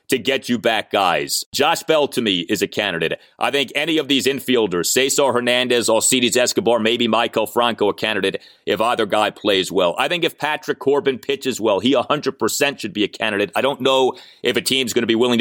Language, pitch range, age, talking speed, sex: English, 130-185 Hz, 30-49, 215 wpm, male